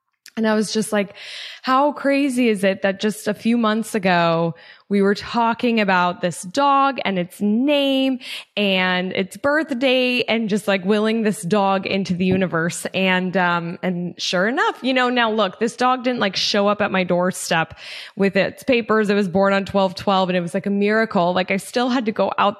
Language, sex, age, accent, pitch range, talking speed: English, female, 20-39, American, 185-225 Hz, 200 wpm